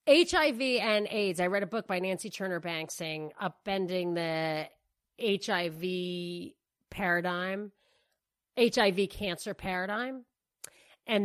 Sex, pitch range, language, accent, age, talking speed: female, 180-215 Hz, English, American, 30-49, 105 wpm